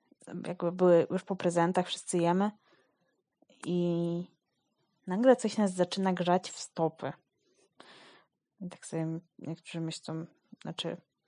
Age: 20-39